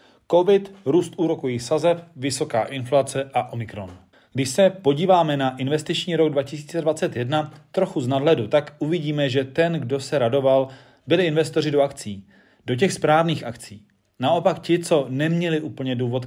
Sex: male